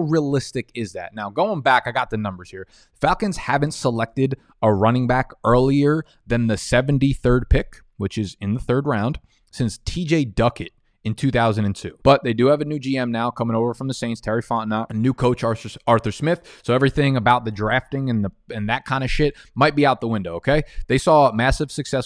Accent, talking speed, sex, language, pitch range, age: American, 205 wpm, male, English, 110-130 Hz, 20-39